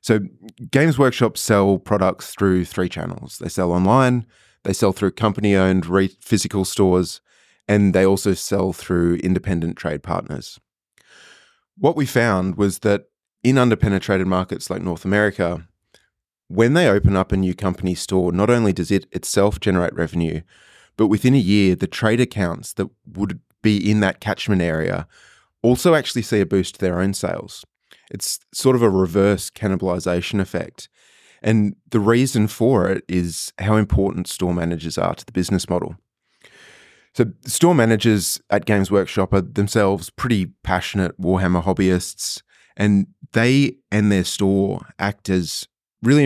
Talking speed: 150 wpm